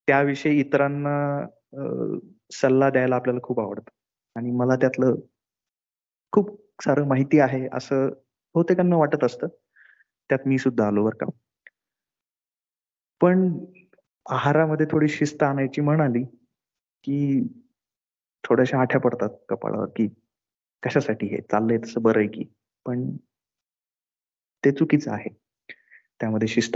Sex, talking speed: male, 105 wpm